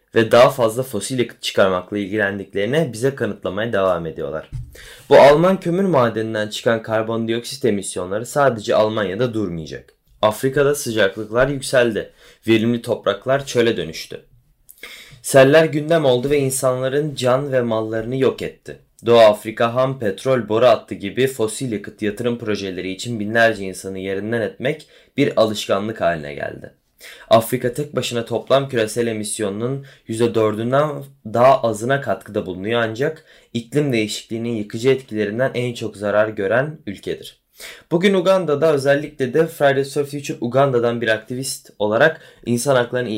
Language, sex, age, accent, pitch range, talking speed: Turkish, male, 20-39, native, 105-135 Hz, 130 wpm